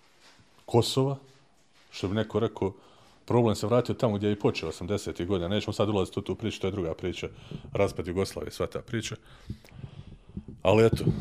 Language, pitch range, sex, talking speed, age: Croatian, 95-115 Hz, male, 170 wpm, 40-59